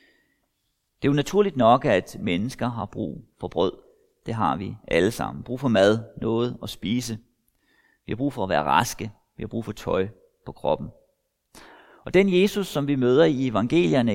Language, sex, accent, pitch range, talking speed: Danish, male, native, 120-195 Hz, 185 wpm